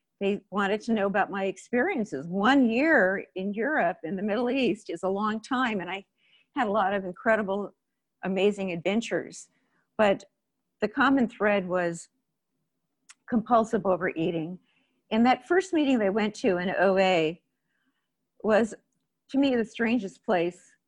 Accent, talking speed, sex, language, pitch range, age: American, 145 wpm, female, English, 180-225 Hz, 50-69